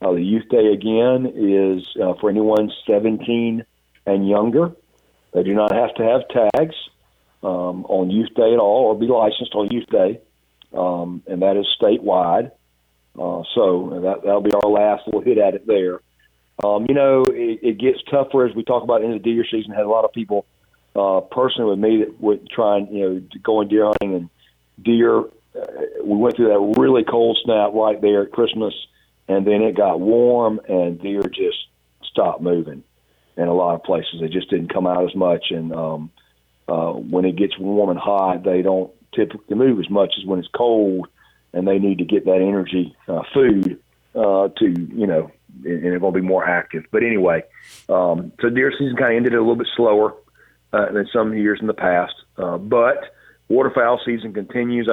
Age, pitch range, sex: 40-59, 90-115 Hz, male